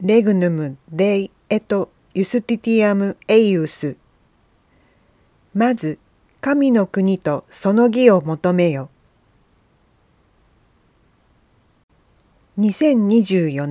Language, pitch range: Japanese, 155-230 Hz